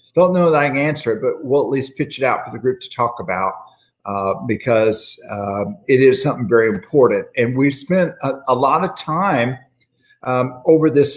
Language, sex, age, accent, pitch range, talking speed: English, male, 50-69, American, 110-145 Hz, 210 wpm